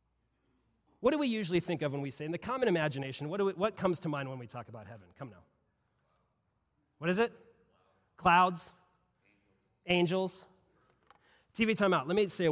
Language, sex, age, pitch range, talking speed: English, male, 30-49, 155-225 Hz, 180 wpm